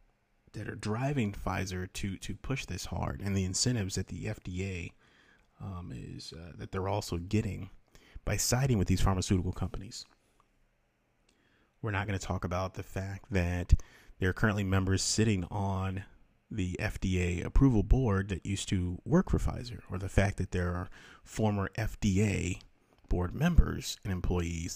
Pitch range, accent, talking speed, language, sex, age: 90-110 Hz, American, 160 wpm, English, male, 30-49